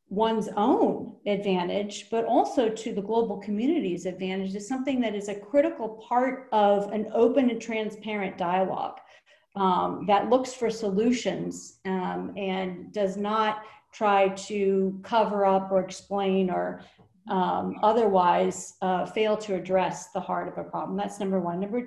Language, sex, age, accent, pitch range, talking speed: English, female, 40-59, American, 195-235 Hz, 150 wpm